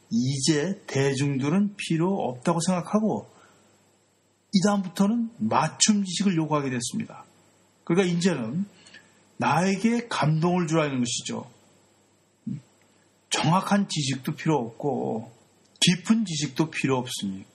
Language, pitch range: Korean, 140-195 Hz